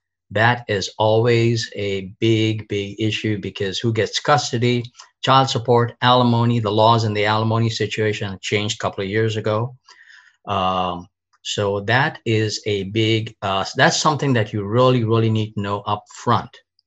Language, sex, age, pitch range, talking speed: English, male, 50-69, 100-120 Hz, 155 wpm